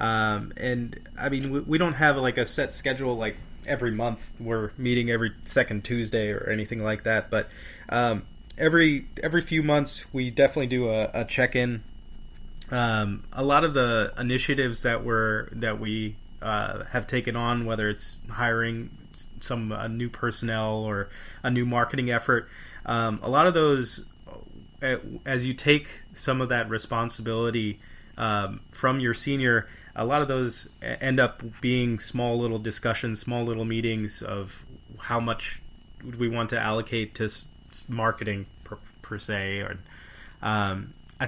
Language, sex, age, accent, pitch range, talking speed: English, male, 20-39, American, 110-125 Hz, 155 wpm